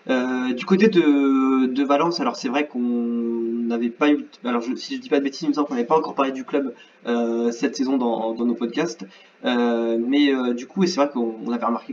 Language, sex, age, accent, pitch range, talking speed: French, male, 20-39, French, 120-165 Hz, 235 wpm